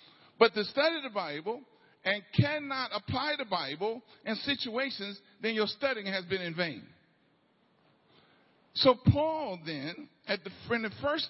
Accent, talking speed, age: American, 135 wpm, 50-69